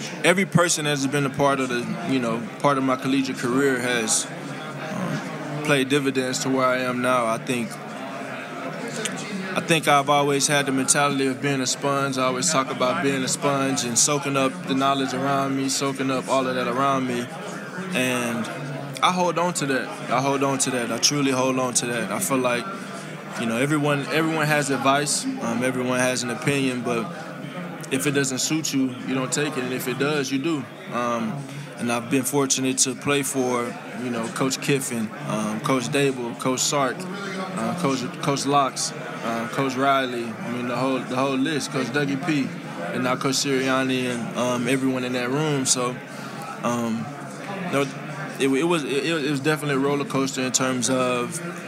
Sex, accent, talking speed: male, American, 190 wpm